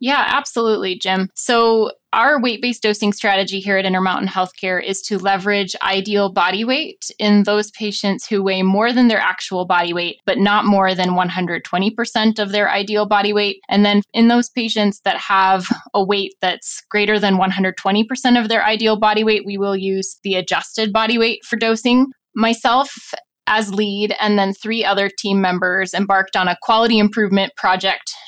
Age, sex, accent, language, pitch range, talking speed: 20-39, female, American, English, 190-220 Hz, 170 wpm